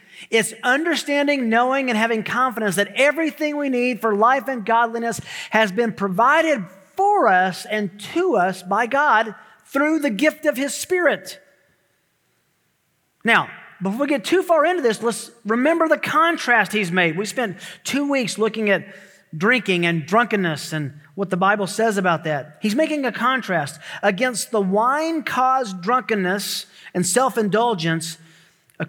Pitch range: 170-245 Hz